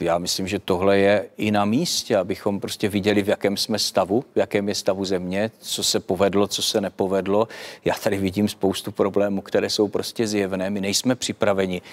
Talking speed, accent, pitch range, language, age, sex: 190 wpm, native, 115-155 Hz, Czech, 40-59, male